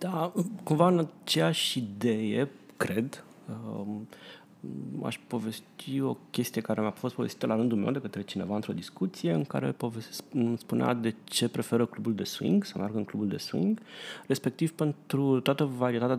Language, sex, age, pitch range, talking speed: Romanian, male, 30-49, 110-165 Hz, 155 wpm